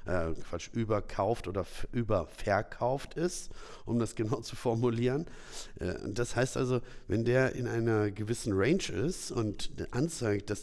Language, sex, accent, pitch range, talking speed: German, male, German, 100-125 Hz, 130 wpm